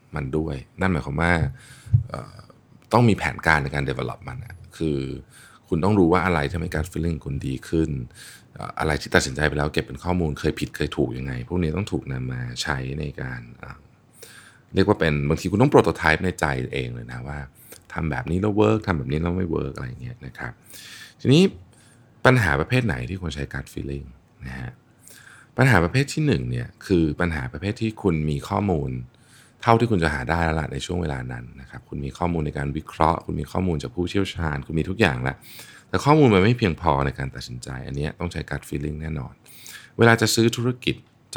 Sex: male